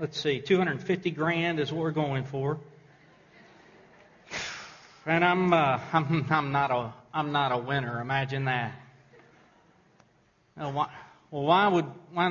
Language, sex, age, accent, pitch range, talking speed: English, male, 40-59, American, 135-175 Hz, 140 wpm